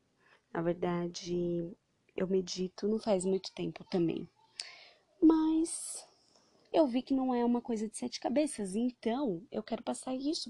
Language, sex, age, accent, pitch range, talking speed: Portuguese, female, 20-39, Brazilian, 170-235 Hz, 145 wpm